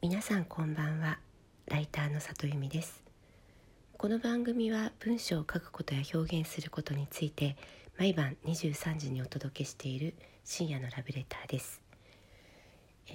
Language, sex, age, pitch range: Japanese, female, 40-59, 135-180 Hz